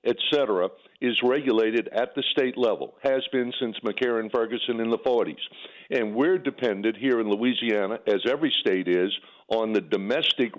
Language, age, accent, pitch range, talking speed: English, 60-79, American, 110-145 Hz, 155 wpm